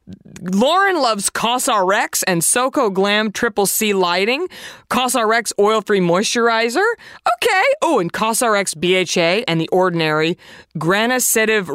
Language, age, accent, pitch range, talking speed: English, 20-39, American, 185-260 Hz, 105 wpm